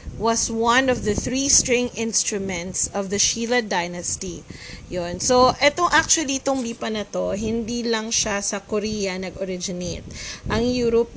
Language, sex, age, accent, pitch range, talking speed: Filipino, female, 20-39, native, 200-235 Hz, 140 wpm